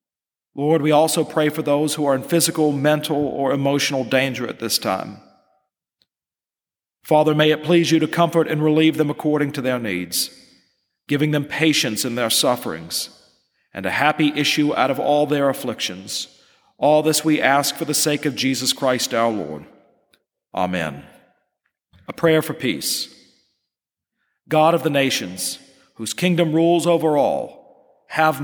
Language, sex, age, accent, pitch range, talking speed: English, male, 40-59, American, 135-160 Hz, 155 wpm